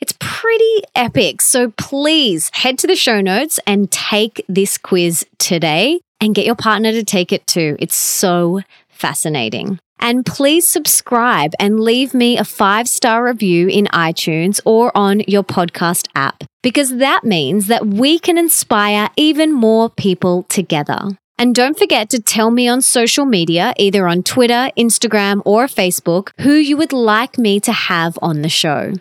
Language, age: English, 20-39